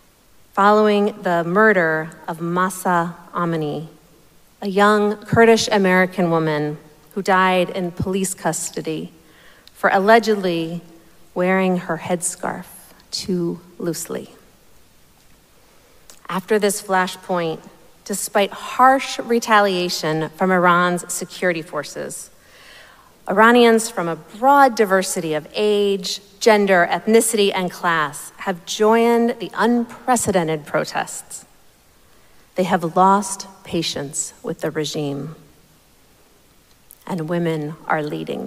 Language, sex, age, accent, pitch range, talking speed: English, female, 40-59, American, 170-210 Hz, 90 wpm